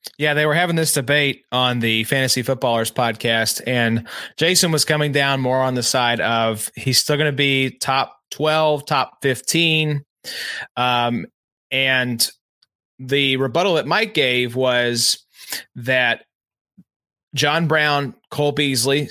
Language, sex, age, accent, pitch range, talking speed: English, male, 30-49, American, 125-150 Hz, 135 wpm